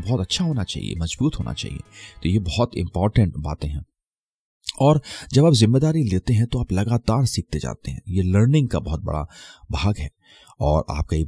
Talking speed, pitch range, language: 185 wpm, 85-115 Hz, Hindi